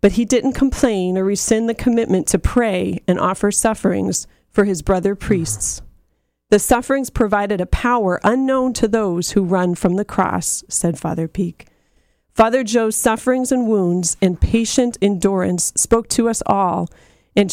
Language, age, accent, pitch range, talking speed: English, 40-59, American, 180-220 Hz, 160 wpm